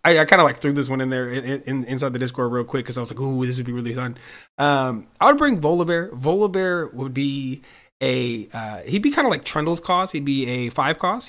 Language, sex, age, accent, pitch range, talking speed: English, male, 20-39, American, 125-155 Hz, 255 wpm